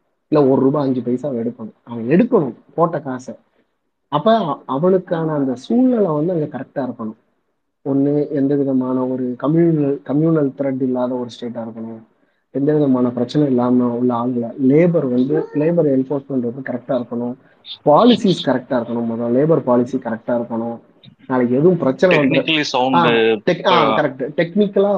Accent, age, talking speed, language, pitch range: native, 30-49, 130 wpm, Tamil, 125-170 Hz